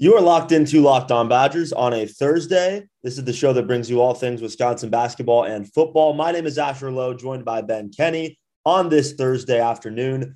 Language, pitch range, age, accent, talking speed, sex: English, 115-145 Hz, 30-49, American, 210 wpm, male